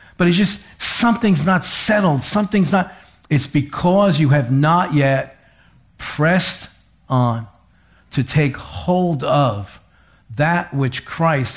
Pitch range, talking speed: 120-175 Hz, 120 wpm